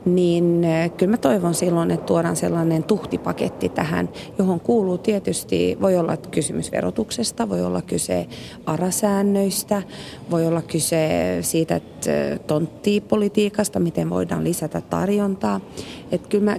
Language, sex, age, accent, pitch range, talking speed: Finnish, female, 30-49, native, 165-205 Hz, 115 wpm